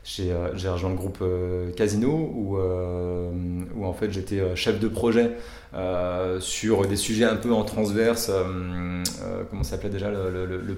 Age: 30-49